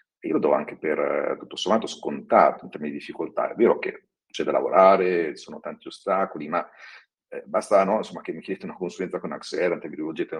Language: Italian